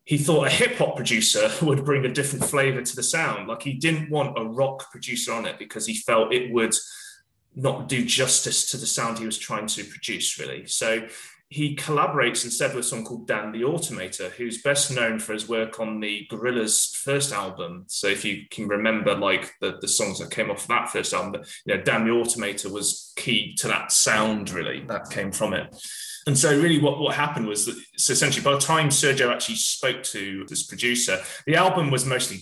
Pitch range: 110-140 Hz